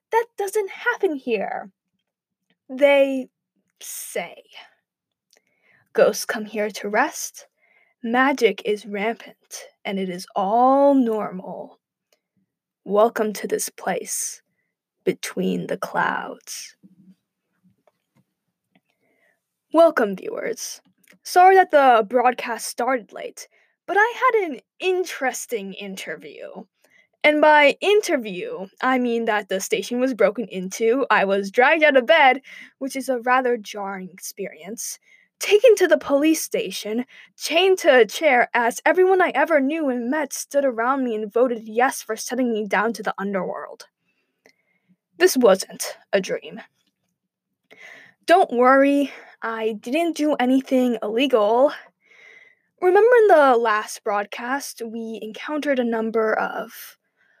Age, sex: 10-29, female